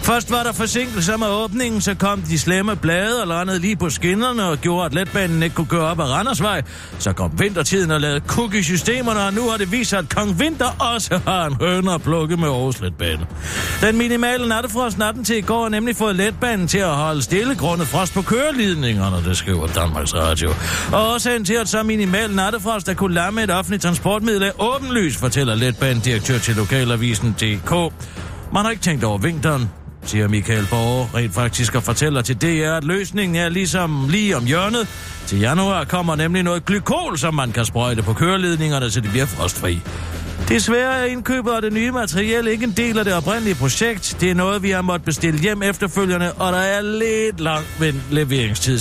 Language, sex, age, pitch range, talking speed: Danish, male, 60-79, 130-215 Hz, 195 wpm